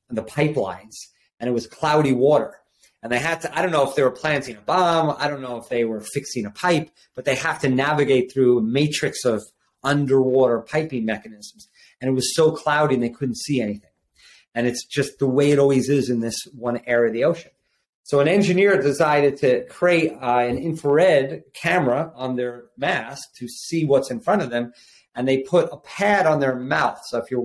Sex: male